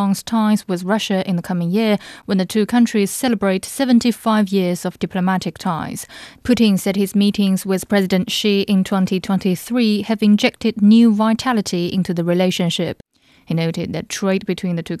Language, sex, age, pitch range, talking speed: English, female, 20-39, 180-215 Hz, 160 wpm